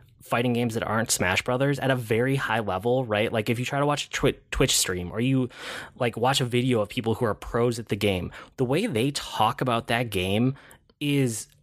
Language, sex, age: English, male, 20-39